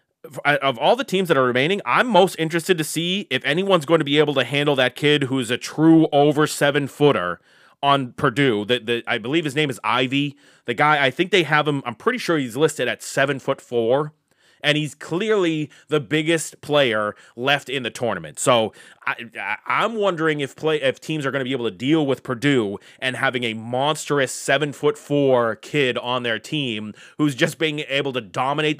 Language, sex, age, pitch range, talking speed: English, male, 30-49, 125-150 Hz, 200 wpm